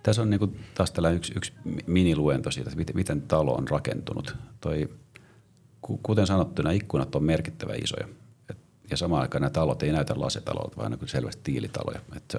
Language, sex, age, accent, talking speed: Finnish, male, 40-59, native, 180 wpm